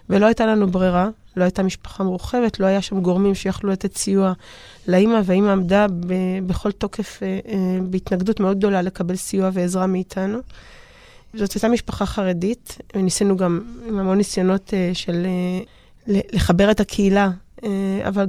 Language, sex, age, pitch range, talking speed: Hebrew, female, 20-39, 190-235 Hz, 150 wpm